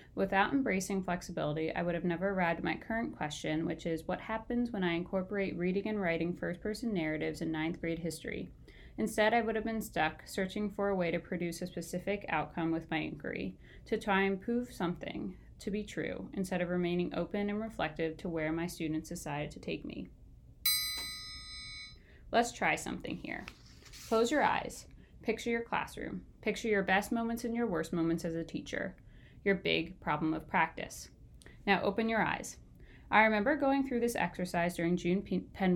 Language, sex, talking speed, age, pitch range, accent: English, female, 180 wpm, 20-39, 170-215 Hz, American